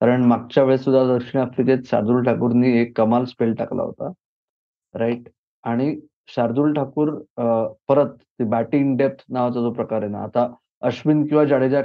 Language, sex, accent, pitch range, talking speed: Marathi, male, native, 125-155 Hz, 145 wpm